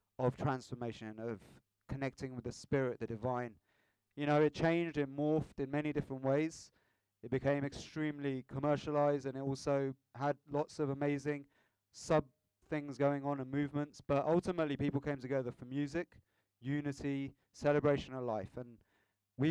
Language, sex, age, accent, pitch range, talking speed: English, male, 30-49, British, 120-145 Hz, 150 wpm